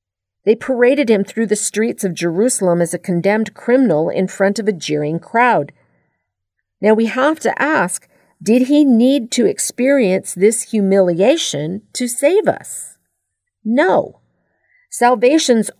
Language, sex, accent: Japanese, female, American